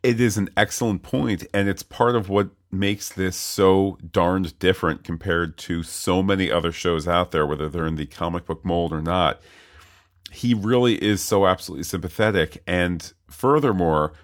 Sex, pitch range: male, 85-105 Hz